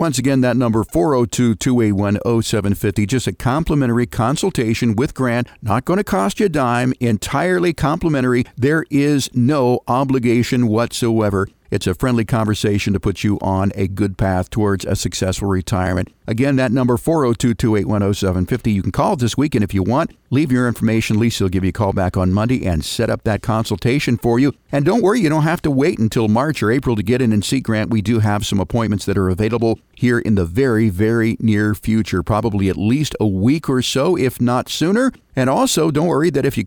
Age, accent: 50-69, American